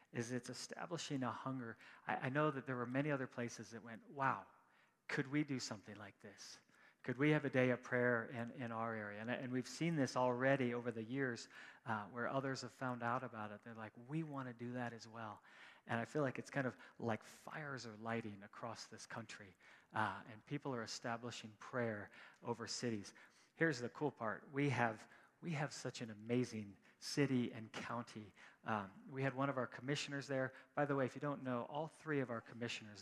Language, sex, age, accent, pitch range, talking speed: English, male, 40-59, American, 115-135 Hz, 210 wpm